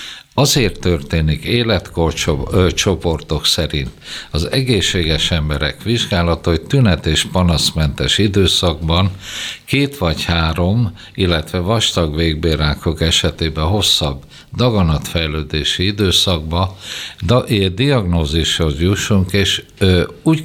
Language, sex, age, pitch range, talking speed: Hungarian, male, 60-79, 80-100 Hz, 80 wpm